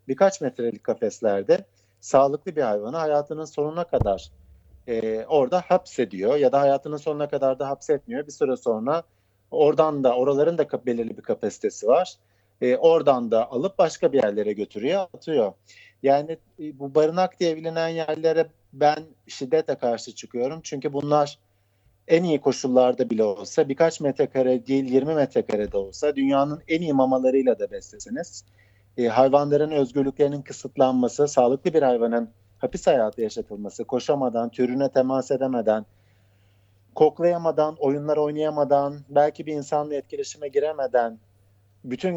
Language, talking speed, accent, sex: German, 130 wpm, Turkish, male